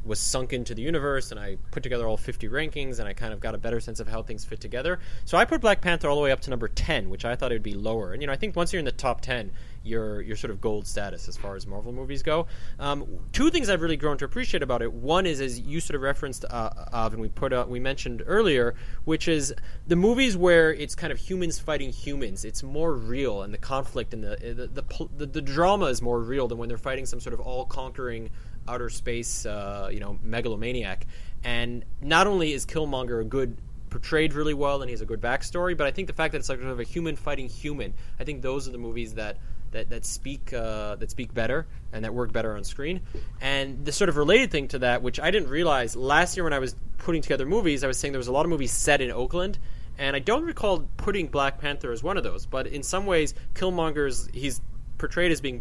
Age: 20-39